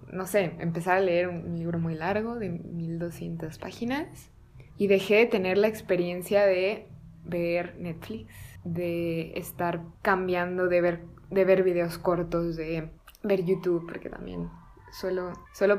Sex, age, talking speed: female, 20-39, 135 wpm